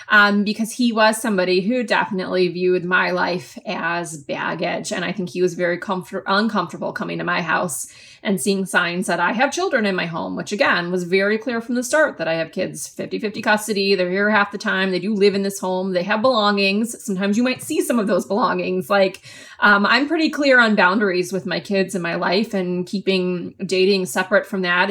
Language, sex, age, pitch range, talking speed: English, female, 20-39, 180-210 Hz, 210 wpm